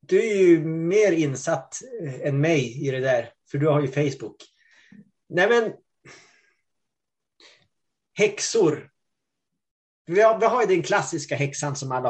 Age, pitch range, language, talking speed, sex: 20-39, 135-180 Hz, Swedish, 140 wpm, male